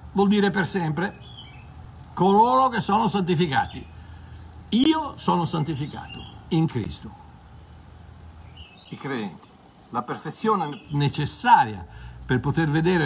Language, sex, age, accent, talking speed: Italian, male, 60-79, native, 95 wpm